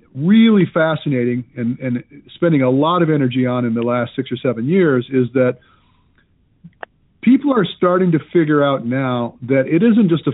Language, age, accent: English, 50-69, American